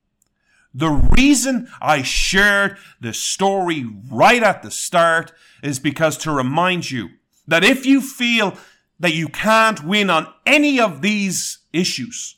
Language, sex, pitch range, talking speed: English, male, 145-195 Hz, 135 wpm